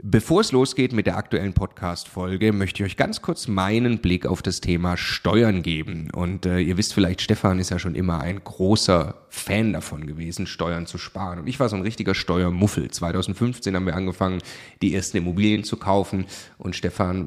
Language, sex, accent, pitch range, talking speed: German, male, German, 90-105 Hz, 190 wpm